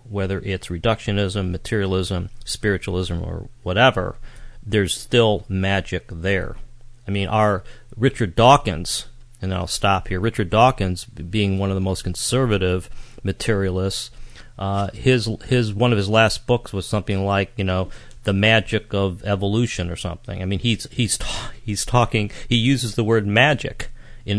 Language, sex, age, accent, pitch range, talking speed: English, male, 40-59, American, 95-120 Hz, 155 wpm